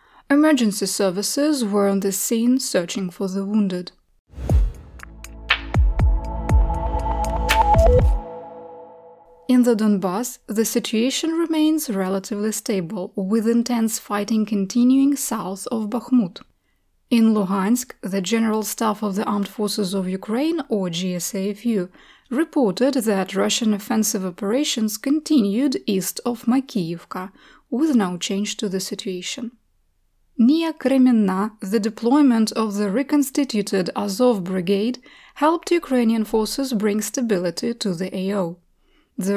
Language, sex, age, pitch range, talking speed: English, female, 20-39, 200-255 Hz, 110 wpm